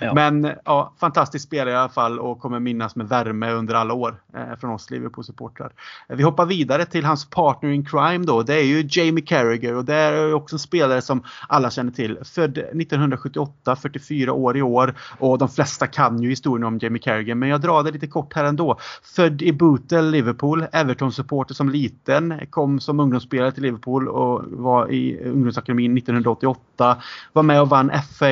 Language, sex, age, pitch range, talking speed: Swedish, male, 30-49, 125-150 Hz, 190 wpm